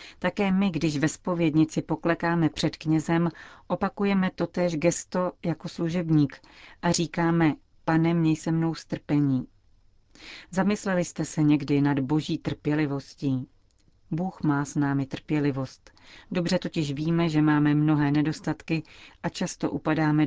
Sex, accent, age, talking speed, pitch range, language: female, native, 40-59, 125 wpm, 145-170 Hz, Czech